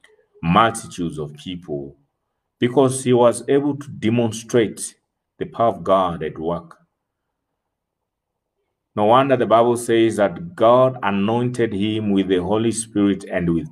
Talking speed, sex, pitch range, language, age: 130 wpm, male, 95-120 Hz, English, 50-69